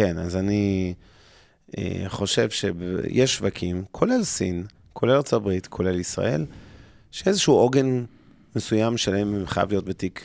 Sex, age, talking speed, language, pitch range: male, 30-49, 115 wpm, Hebrew, 100-120 Hz